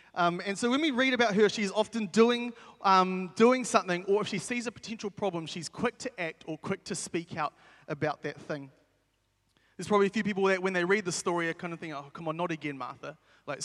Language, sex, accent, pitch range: English, male, Australian, 155-200 Hz